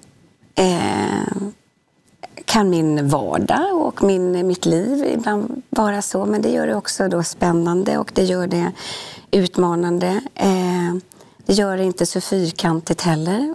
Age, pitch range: 30-49, 175-210 Hz